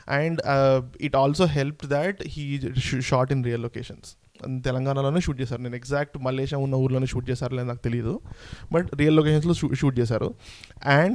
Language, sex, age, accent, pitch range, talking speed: Telugu, male, 20-39, native, 135-175 Hz, 180 wpm